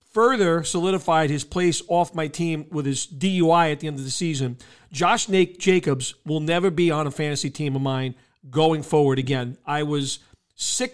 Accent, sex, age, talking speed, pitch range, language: American, male, 40-59, 180 wpm, 145-185 Hz, English